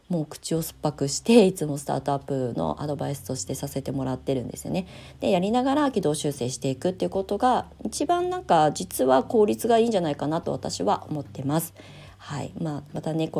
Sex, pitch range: female, 135-165 Hz